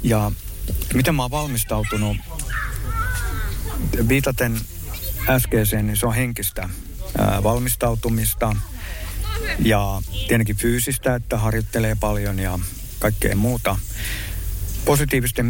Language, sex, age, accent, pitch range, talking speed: Finnish, male, 50-69, native, 95-115 Hz, 85 wpm